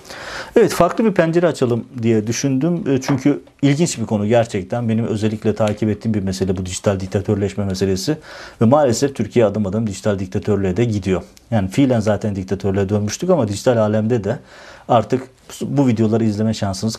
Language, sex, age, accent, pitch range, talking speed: Turkish, male, 50-69, native, 105-125 Hz, 160 wpm